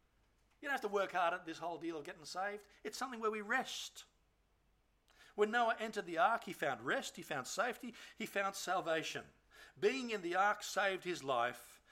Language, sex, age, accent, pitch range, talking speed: English, male, 60-79, Australian, 165-220 Hz, 195 wpm